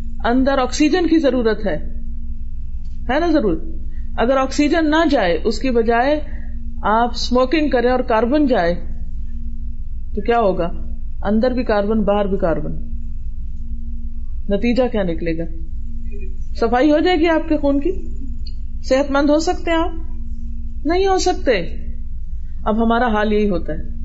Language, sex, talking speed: Urdu, female, 140 wpm